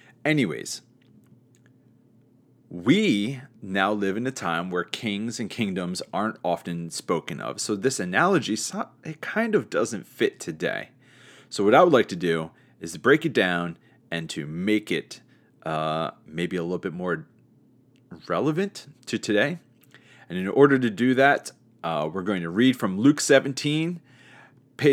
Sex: male